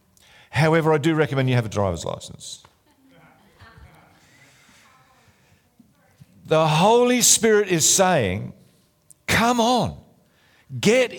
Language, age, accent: English, 50-69, Australian